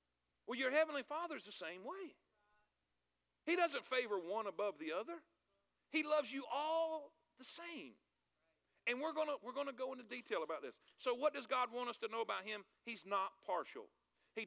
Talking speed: 185 wpm